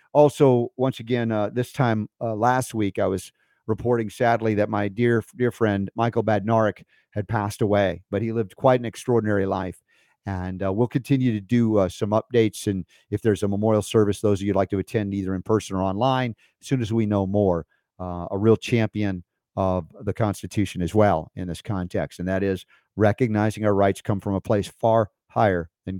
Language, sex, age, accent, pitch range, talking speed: English, male, 50-69, American, 100-125 Hz, 205 wpm